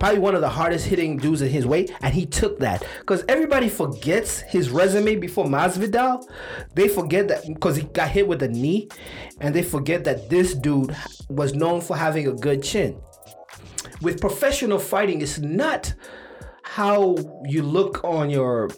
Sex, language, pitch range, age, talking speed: male, English, 140-195 Hz, 30-49, 175 wpm